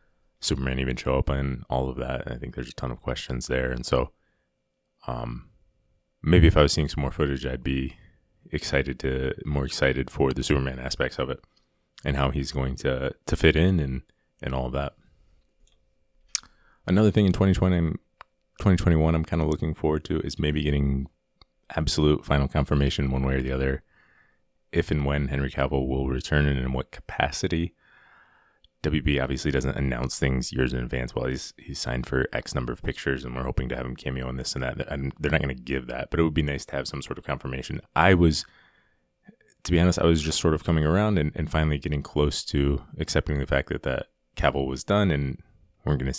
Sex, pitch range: male, 65-80 Hz